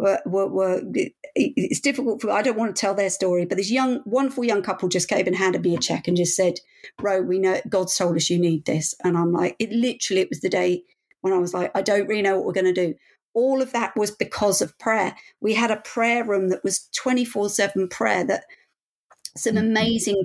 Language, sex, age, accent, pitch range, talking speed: English, female, 50-69, British, 190-235 Hz, 230 wpm